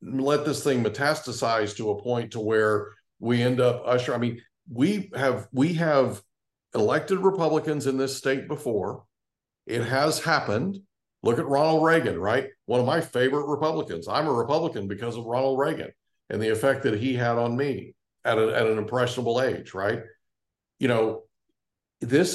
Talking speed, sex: 170 wpm, male